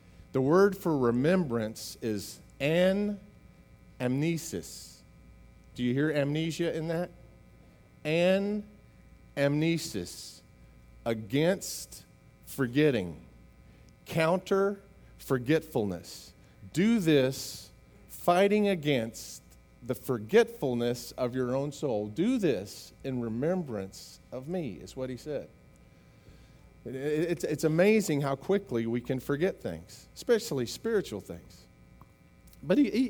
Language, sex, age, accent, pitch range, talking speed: English, male, 40-59, American, 115-165 Hz, 100 wpm